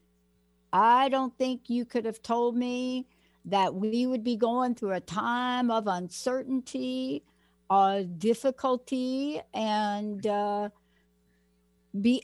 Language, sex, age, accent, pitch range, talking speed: English, female, 60-79, American, 185-240 Hz, 115 wpm